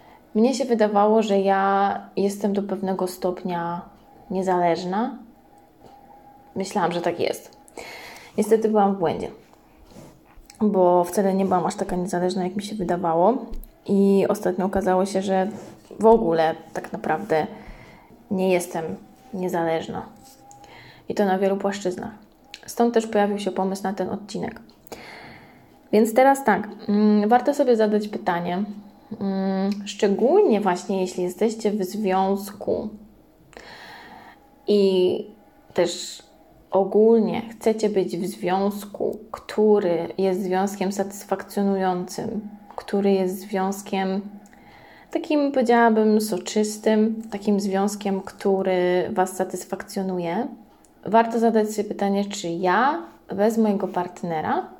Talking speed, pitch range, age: 105 wpm, 185-215 Hz, 20-39